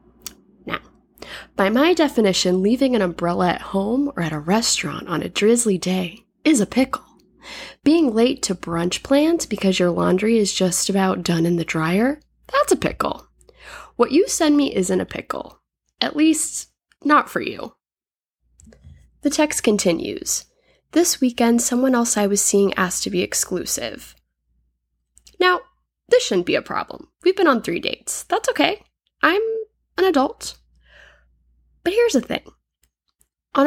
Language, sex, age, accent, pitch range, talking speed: English, female, 10-29, American, 185-255 Hz, 150 wpm